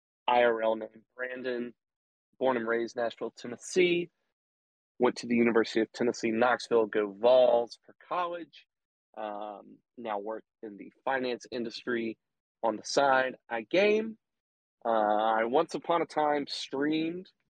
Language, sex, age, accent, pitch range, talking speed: English, male, 30-49, American, 110-140 Hz, 135 wpm